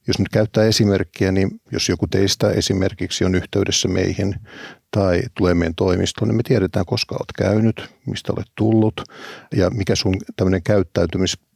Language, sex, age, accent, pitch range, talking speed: Finnish, male, 50-69, native, 95-115 Hz, 155 wpm